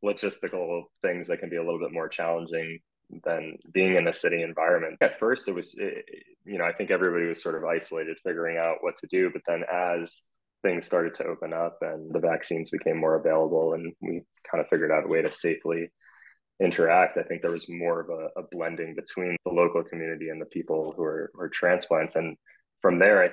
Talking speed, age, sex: 215 wpm, 20-39, male